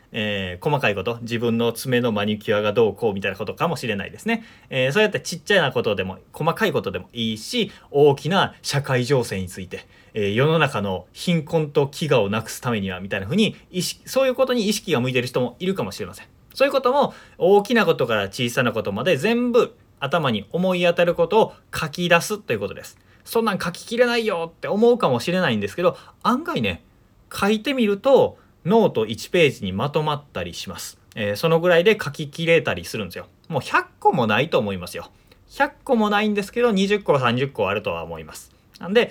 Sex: male